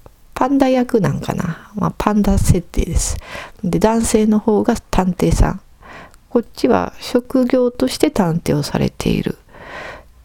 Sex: female